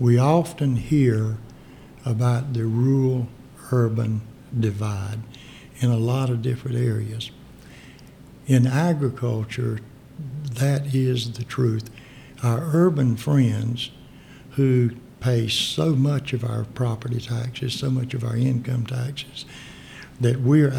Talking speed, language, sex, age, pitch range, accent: 110 wpm, English, male, 60-79, 115-135 Hz, American